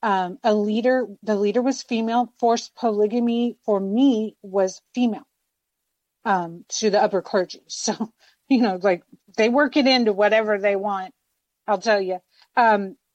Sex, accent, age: female, American, 40-59